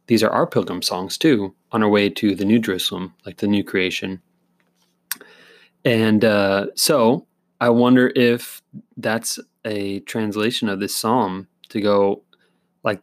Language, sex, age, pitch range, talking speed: English, male, 20-39, 100-125 Hz, 145 wpm